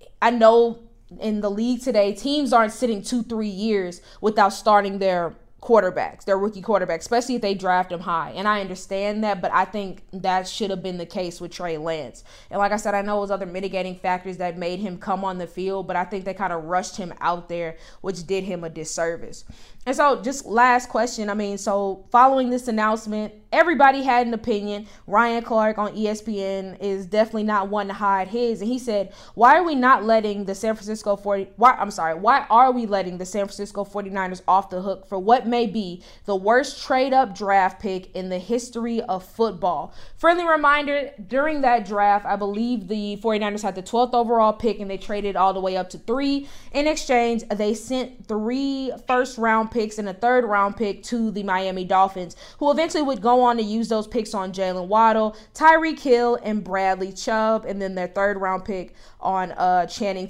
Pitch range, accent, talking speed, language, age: 190-235 Hz, American, 205 wpm, English, 20-39